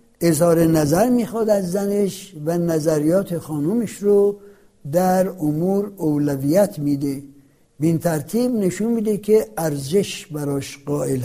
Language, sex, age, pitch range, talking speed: Persian, male, 60-79, 150-205 Hz, 110 wpm